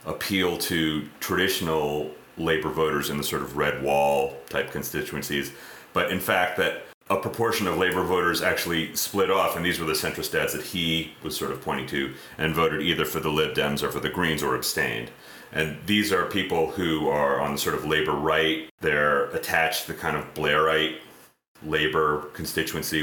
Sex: male